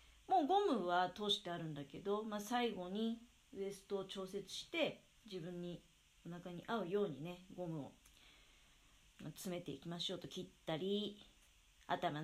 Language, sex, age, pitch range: Japanese, female, 40-59, 160-205 Hz